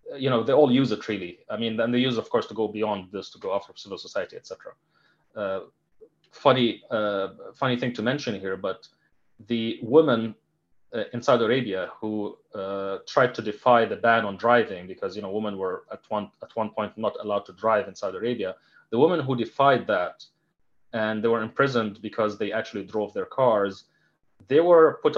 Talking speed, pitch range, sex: 205 wpm, 110-155 Hz, male